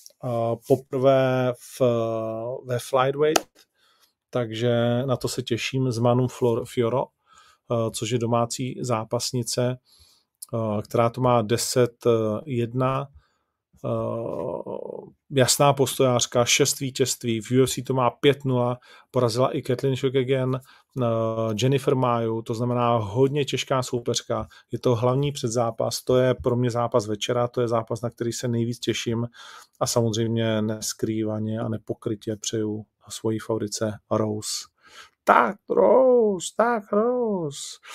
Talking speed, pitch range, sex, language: 120 wpm, 115-130 Hz, male, Czech